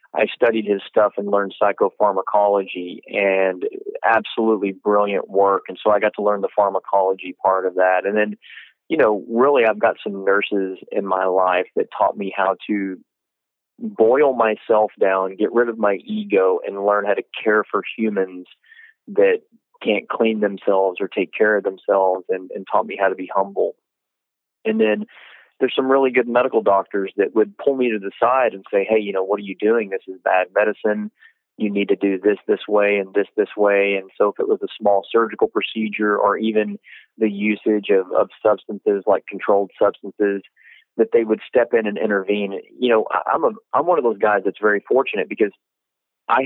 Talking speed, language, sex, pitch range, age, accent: 195 wpm, English, male, 100-115 Hz, 30-49, American